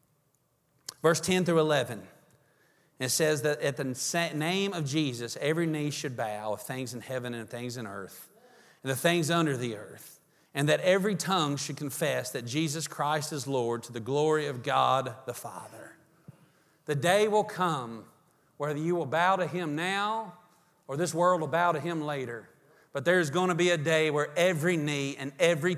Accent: American